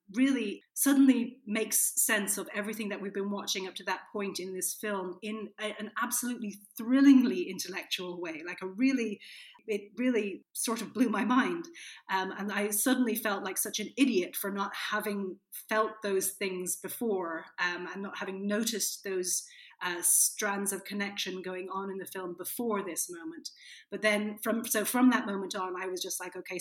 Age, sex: 30-49, female